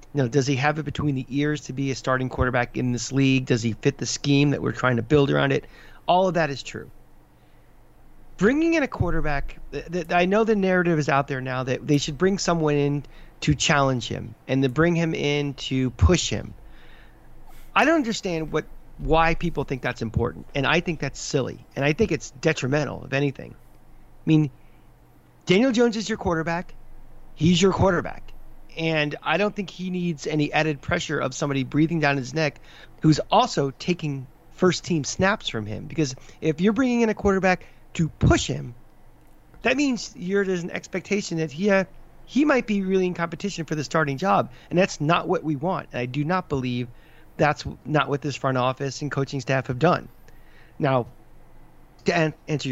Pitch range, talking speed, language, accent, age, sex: 135-180 Hz, 195 wpm, English, American, 40-59, male